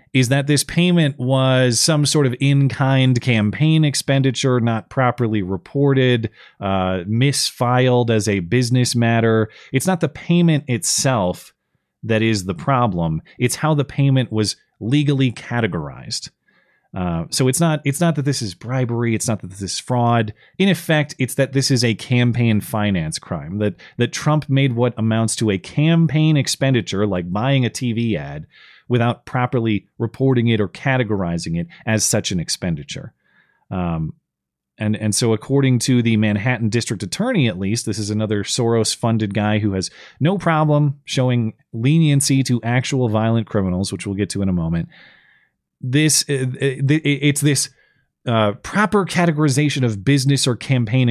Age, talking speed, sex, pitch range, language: 30-49, 155 wpm, male, 105-140 Hz, English